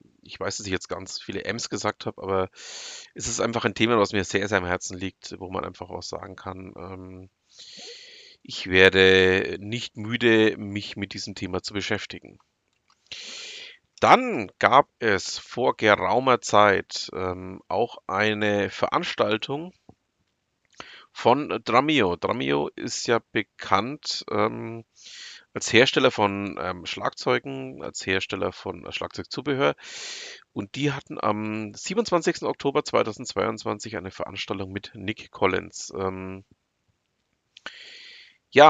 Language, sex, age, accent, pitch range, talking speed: German, male, 40-59, German, 95-130 Hz, 125 wpm